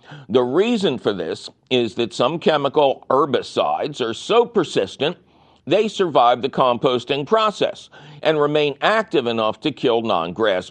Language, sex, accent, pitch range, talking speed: English, male, American, 125-180 Hz, 135 wpm